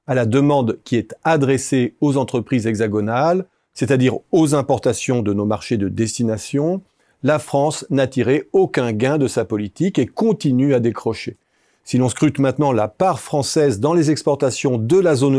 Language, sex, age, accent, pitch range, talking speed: French, male, 40-59, French, 125-160 Hz, 170 wpm